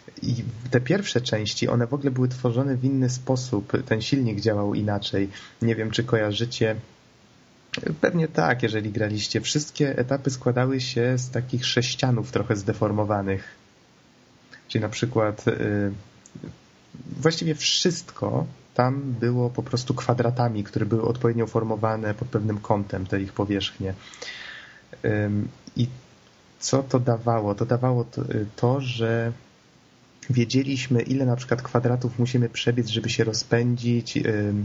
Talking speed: 125 wpm